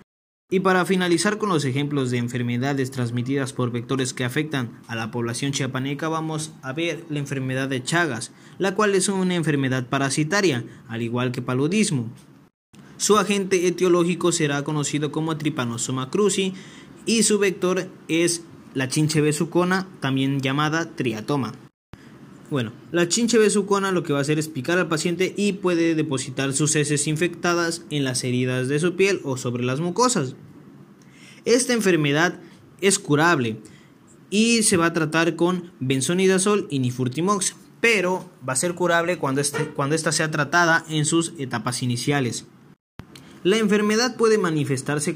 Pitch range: 135-180 Hz